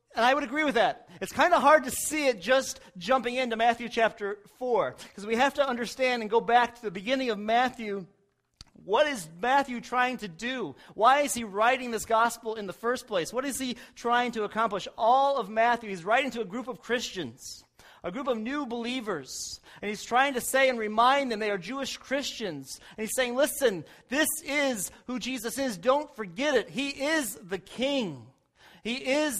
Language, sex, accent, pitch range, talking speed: English, male, American, 180-250 Hz, 200 wpm